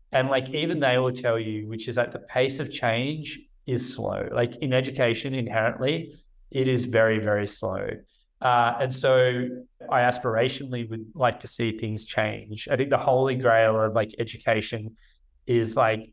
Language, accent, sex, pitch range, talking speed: English, Australian, male, 110-130 Hz, 170 wpm